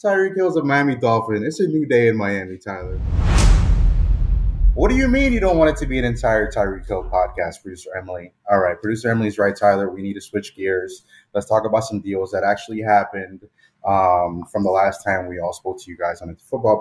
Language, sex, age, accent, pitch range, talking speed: English, male, 20-39, American, 95-110 Hz, 220 wpm